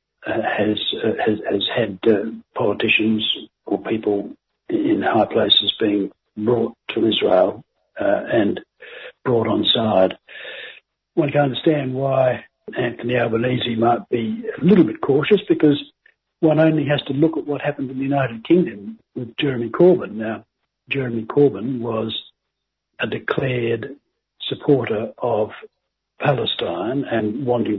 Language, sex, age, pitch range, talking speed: English, male, 60-79, 115-150 Hz, 130 wpm